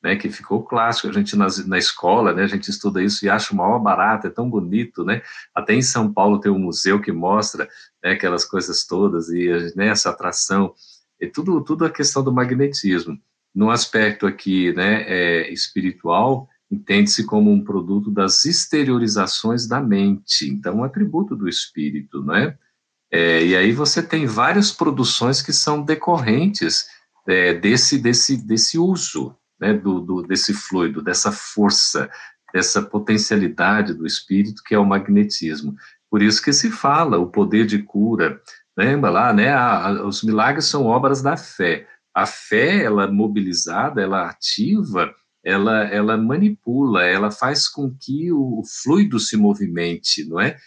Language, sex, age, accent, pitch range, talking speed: Portuguese, male, 50-69, Brazilian, 100-145 Hz, 160 wpm